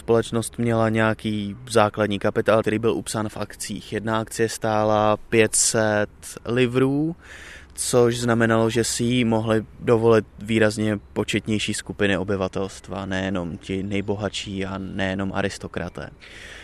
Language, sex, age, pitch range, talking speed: Czech, male, 20-39, 105-145 Hz, 115 wpm